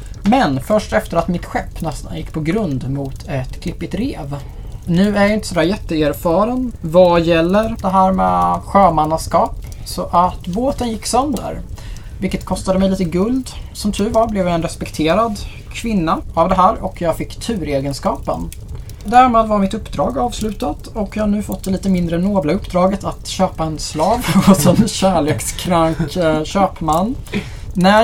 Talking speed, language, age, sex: 165 wpm, Swedish, 20-39, male